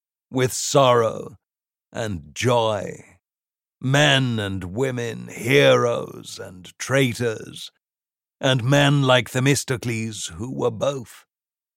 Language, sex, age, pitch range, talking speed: English, male, 60-79, 105-125 Hz, 85 wpm